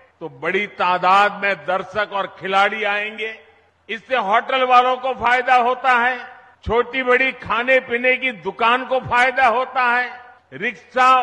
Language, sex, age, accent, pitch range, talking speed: Hindi, male, 50-69, native, 225-270 Hz, 140 wpm